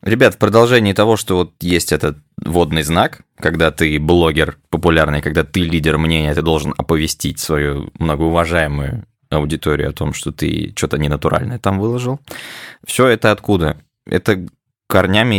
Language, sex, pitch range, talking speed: Russian, male, 75-95 Hz, 145 wpm